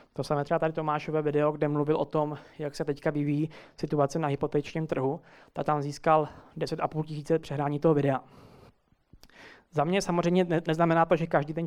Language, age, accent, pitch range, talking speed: Czech, 20-39, native, 150-165 Hz, 175 wpm